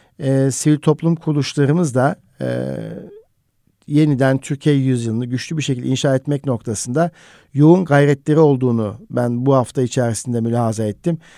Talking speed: 125 wpm